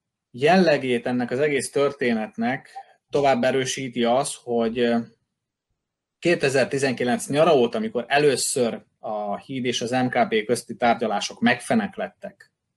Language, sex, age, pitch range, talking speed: Hungarian, male, 20-39, 120-160 Hz, 105 wpm